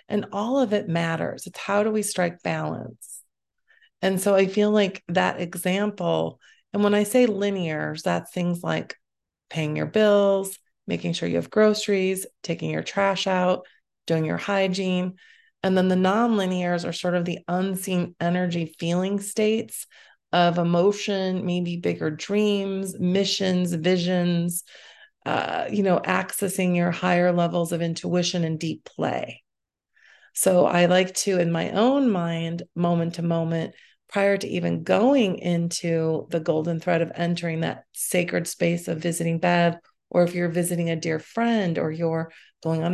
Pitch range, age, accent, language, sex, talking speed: 170-200 Hz, 30-49, American, English, female, 155 wpm